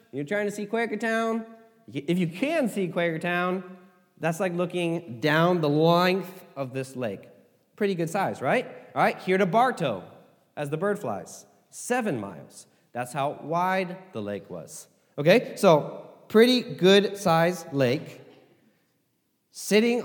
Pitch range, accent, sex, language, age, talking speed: 140-210 Hz, American, male, English, 30-49, 145 wpm